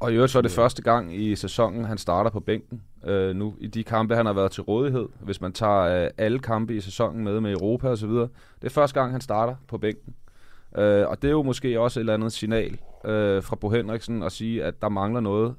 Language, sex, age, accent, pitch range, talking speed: Danish, male, 30-49, native, 110-130 Hz, 250 wpm